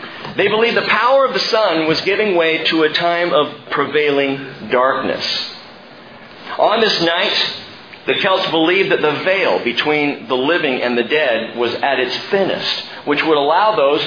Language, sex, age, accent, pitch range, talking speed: English, male, 50-69, American, 150-215 Hz, 165 wpm